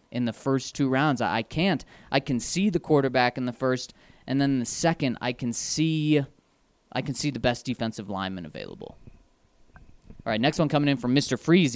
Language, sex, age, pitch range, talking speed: English, male, 20-39, 120-155 Hz, 195 wpm